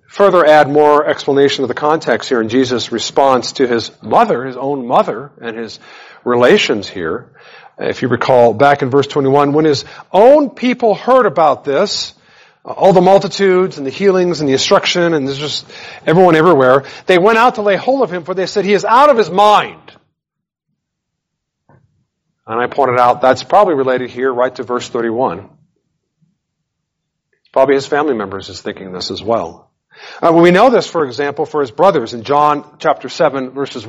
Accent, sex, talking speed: American, male, 180 wpm